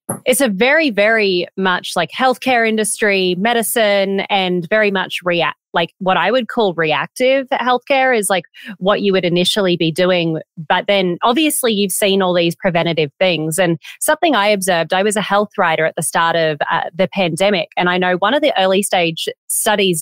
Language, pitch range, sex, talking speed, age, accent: English, 175-235 Hz, female, 185 wpm, 30-49, Australian